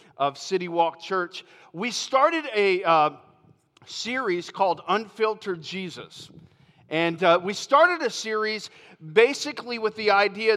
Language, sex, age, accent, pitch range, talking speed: English, male, 40-59, American, 190-240 Hz, 125 wpm